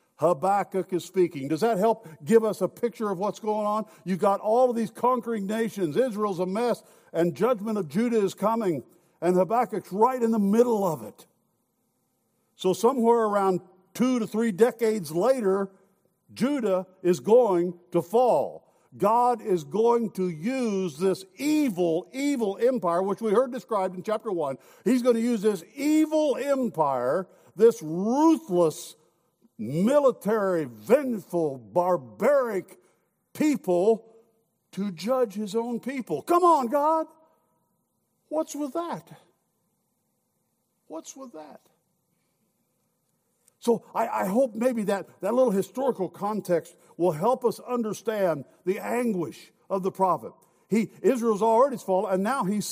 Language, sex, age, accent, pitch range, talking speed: English, male, 60-79, American, 185-245 Hz, 135 wpm